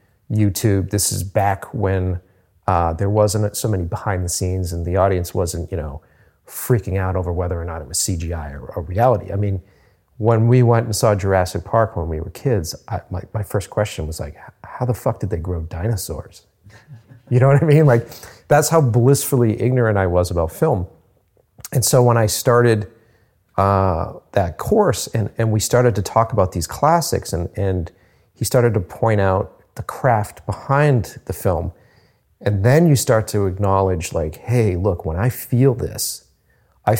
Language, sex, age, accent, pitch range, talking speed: English, male, 40-59, American, 95-120 Hz, 185 wpm